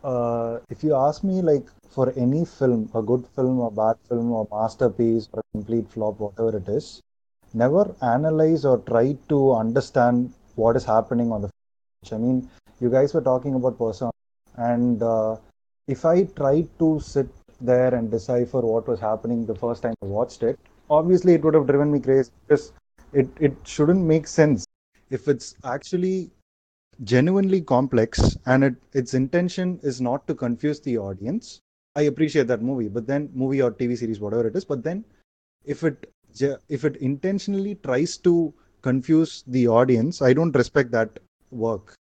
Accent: Indian